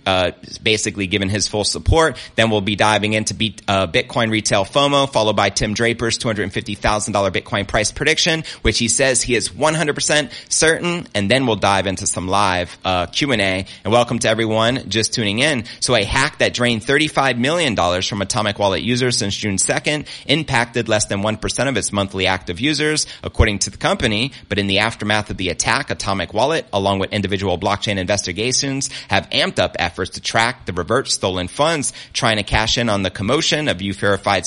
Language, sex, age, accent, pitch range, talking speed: English, male, 30-49, American, 100-125 Hz, 190 wpm